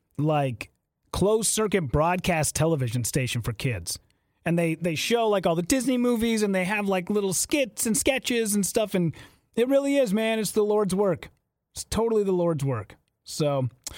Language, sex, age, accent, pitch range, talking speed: English, male, 30-49, American, 150-220 Hz, 180 wpm